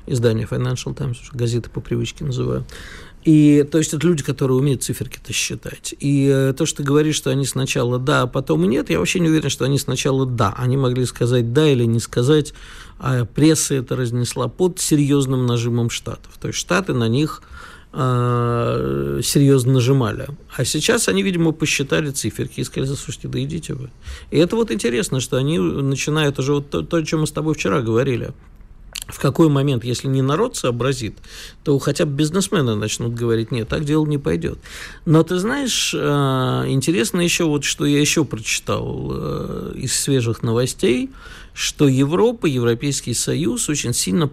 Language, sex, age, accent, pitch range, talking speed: Russian, male, 50-69, native, 120-155 Hz, 170 wpm